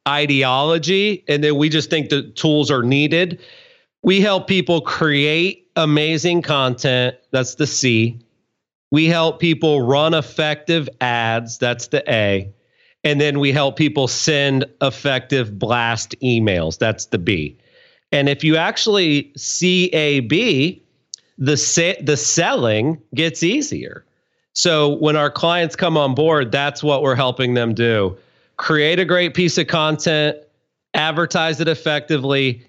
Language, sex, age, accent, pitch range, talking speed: English, male, 40-59, American, 135-170 Hz, 135 wpm